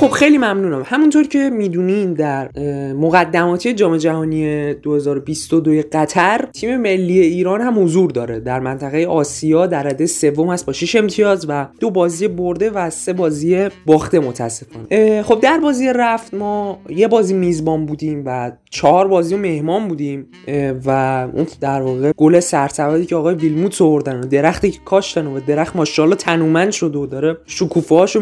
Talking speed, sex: 150 wpm, male